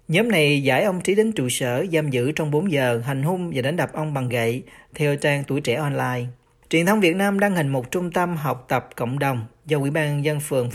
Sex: male